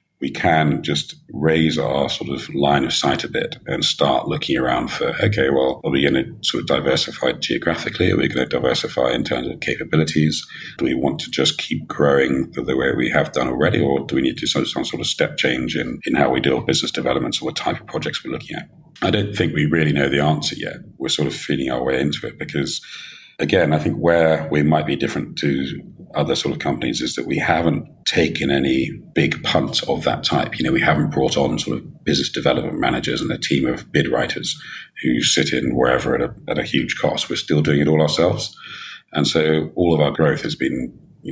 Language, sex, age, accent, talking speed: English, male, 40-59, British, 230 wpm